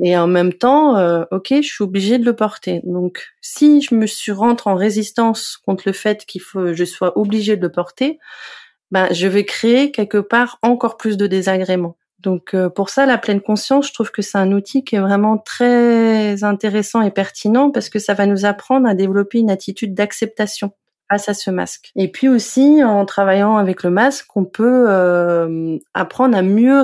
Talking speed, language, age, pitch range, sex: 200 wpm, French, 30-49, 185-230 Hz, female